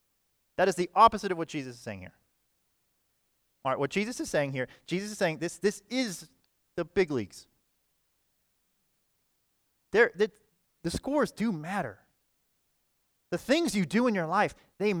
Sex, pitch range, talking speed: male, 160-230 Hz, 155 wpm